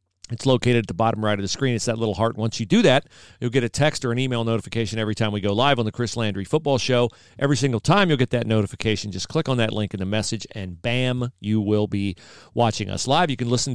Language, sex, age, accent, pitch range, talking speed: English, male, 40-59, American, 100-125 Hz, 270 wpm